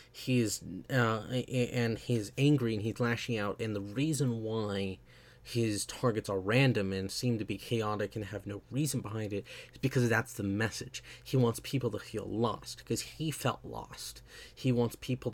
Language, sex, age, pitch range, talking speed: English, male, 30-49, 105-125 Hz, 180 wpm